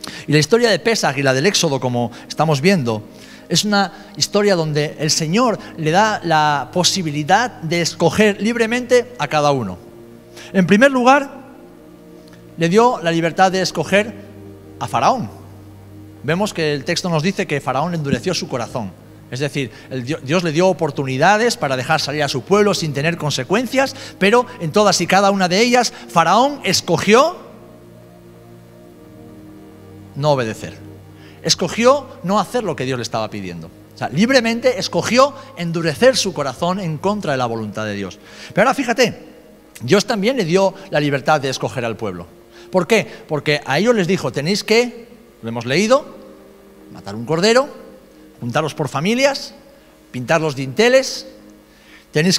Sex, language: male, Spanish